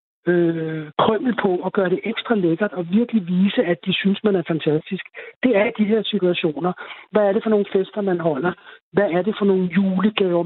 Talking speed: 205 wpm